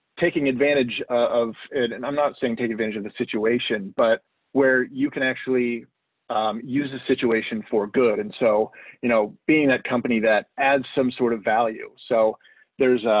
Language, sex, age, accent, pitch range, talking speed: English, male, 30-49, American, 120-145 Hz, 175 wpm